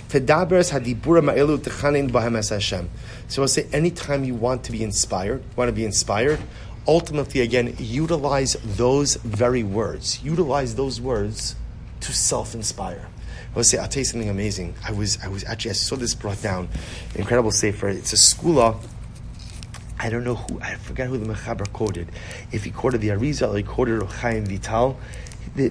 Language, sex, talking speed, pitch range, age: English, male, 155 wpm, 105-130 Hz, 30-49